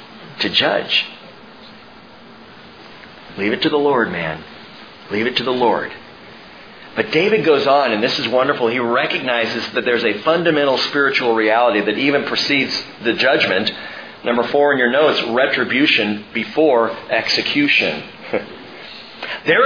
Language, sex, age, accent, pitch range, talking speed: English, male, 40-59, American, 150-235 Hz, 130 wpm